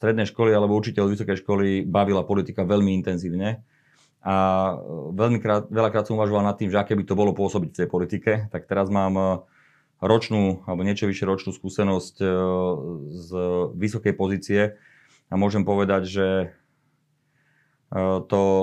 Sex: male